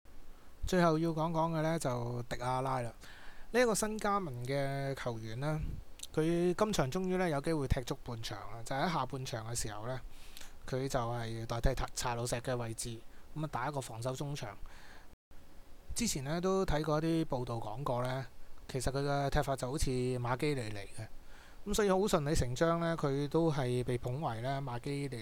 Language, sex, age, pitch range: English, male, 20-39, 120-165 Hz